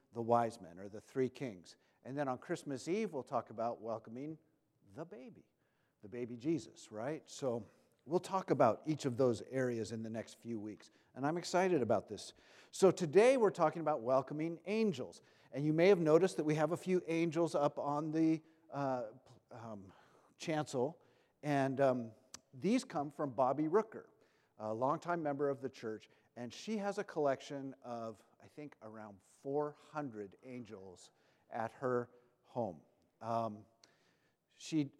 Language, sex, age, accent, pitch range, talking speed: English, male, 50-69, American, 120-155 Hz, 160 wpm